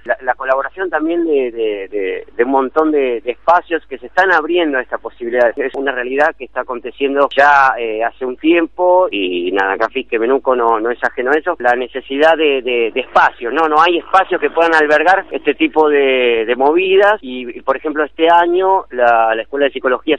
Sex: male